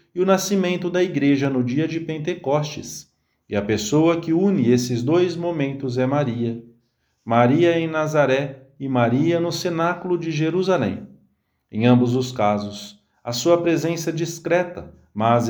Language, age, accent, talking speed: English, 40-59, Brazilian, 145 wpm